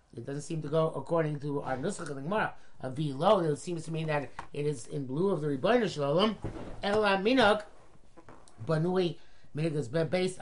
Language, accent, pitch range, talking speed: English, American, 150-195 Hz, 190 wpm